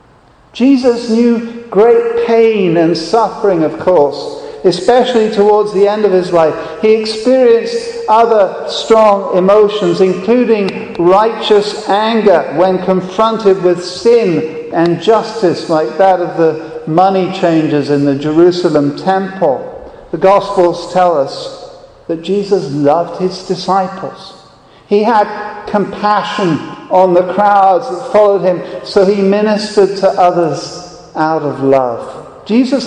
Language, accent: English, British